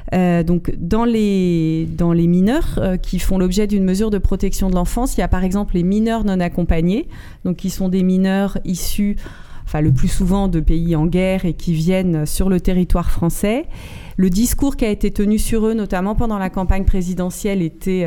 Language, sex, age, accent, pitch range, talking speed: French, female, 40-59, French, 170-220 Hz, 205 wpm